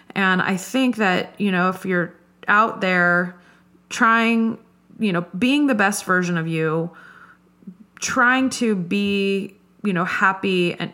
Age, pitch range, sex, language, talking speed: 30-49, 175-215 Hz, female, English, 145 wpm